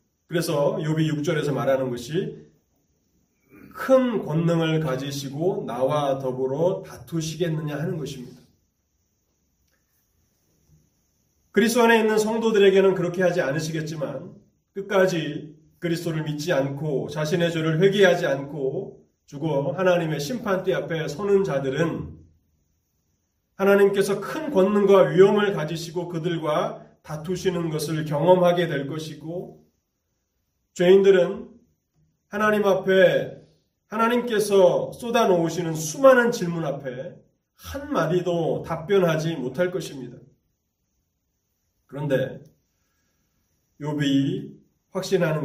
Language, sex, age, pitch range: Korean, male, 30-49, 140-190 Hz